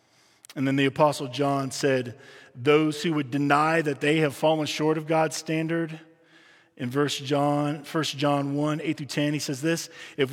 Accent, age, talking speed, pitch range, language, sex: American, 40-59, 175 wpm, 140-170 Hz, English, male